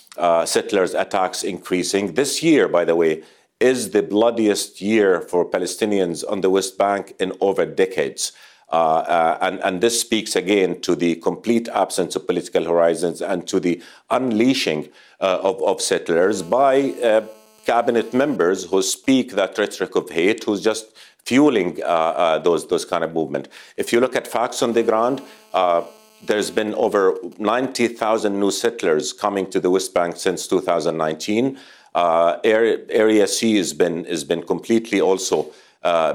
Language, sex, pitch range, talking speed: English, male, 85-110 Hz, 160 wpm